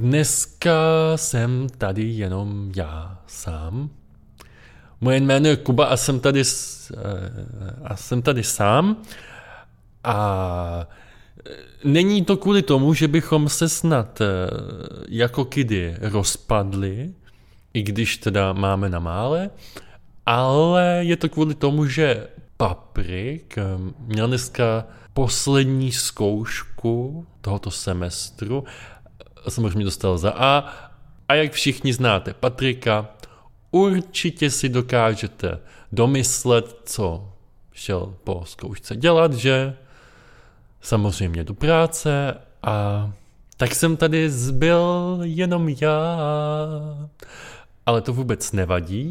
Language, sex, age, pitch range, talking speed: Czech, male, 20-39, 105-155 Hz, 95 wpm